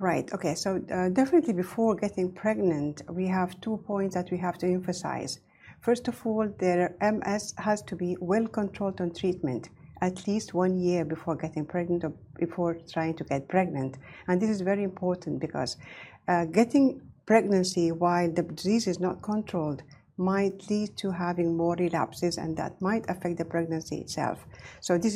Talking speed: 170 wpm